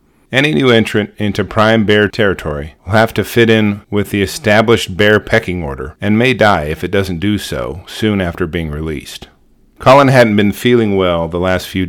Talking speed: 190 wpm